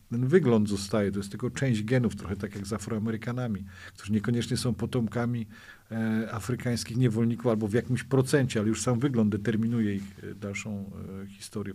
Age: 50-69